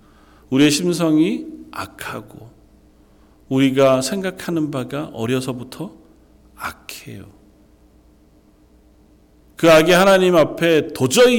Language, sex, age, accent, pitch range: Korean, male, 40-59, native, 100-160 Hz